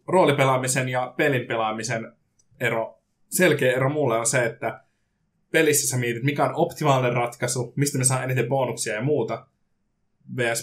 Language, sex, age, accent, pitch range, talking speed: Finnish, male, 20-39, native, 115-135 Hz, 145 wpm